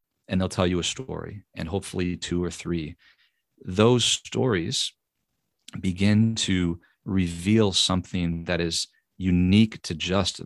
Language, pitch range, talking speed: English, 85-100 Hz, 125 wpm